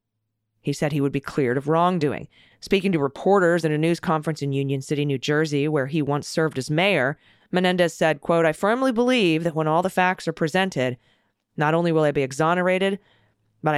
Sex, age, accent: female, 30-49, American